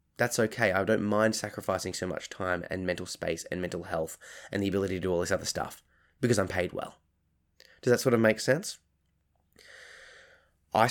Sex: male